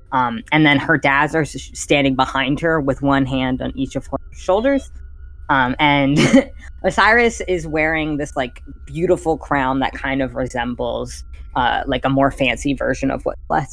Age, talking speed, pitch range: 10-29, 165 wpm, 130-160 Hz